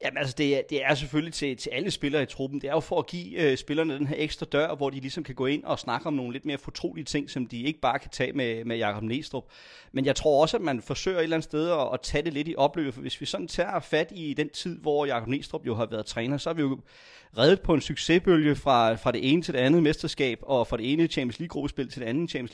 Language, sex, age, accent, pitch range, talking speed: Danish, male, 30-49, native, 125-155 Hz, 285 wpm